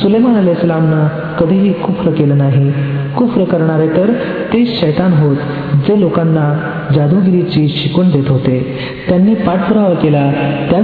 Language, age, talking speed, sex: Marathi, 40-59, 125 wpm, male